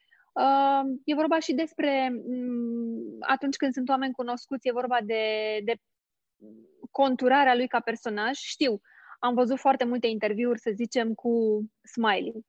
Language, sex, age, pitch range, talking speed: Romanian, female, 20-39, 230-275 Hz, 130 wpm